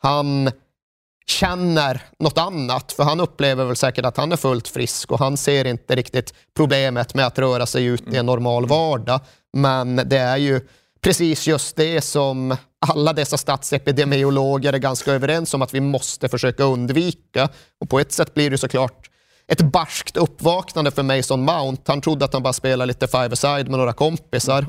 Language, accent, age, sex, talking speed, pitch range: Swedish, native, 30-49, male, 175 wpm, 130-150 Hz